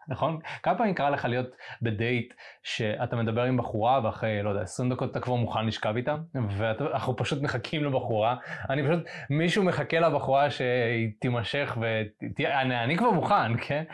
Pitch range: 120-170 Hz